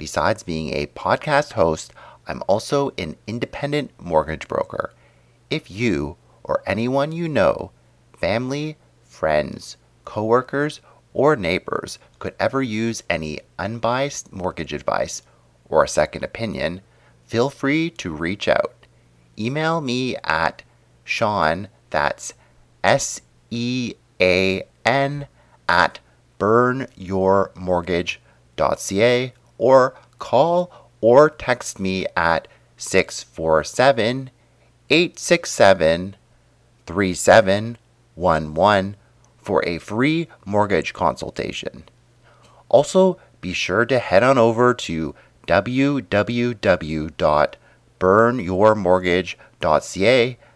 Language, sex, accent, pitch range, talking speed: English, male, American, 85-125 Hz, 80 wpm